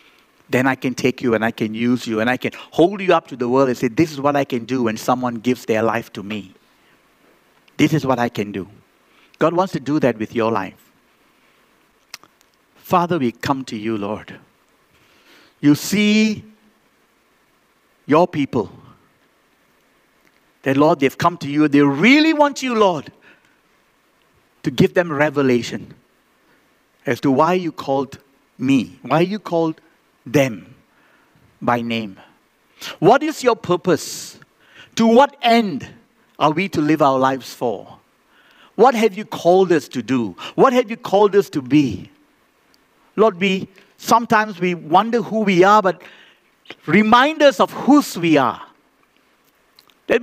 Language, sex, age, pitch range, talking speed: English, male, 60-79, 130-205 Hz, 155 wpm